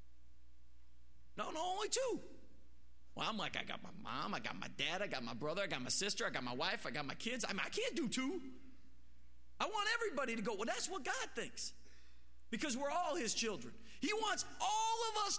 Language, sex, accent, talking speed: English, male, American, 220 wpm